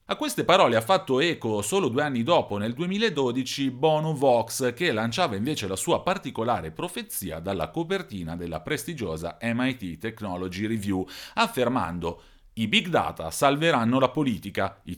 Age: 40-59